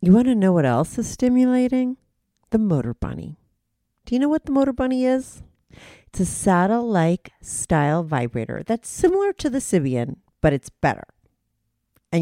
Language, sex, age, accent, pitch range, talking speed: English, female, 40-59, American, 150-225 Hz, 160 wpm